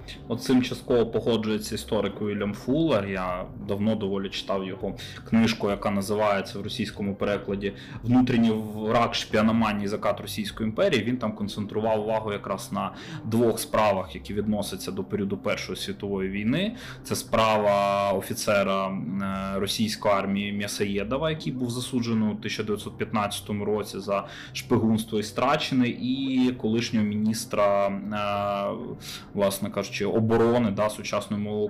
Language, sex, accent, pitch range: Ukrainian, male, native, 100-115 Hz